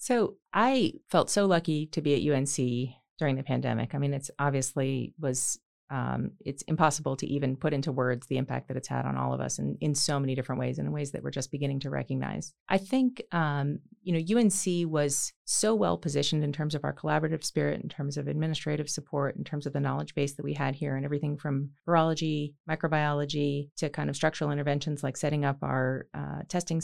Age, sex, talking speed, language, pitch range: 30-49, female, 215 wpm, English, 140-160 Hz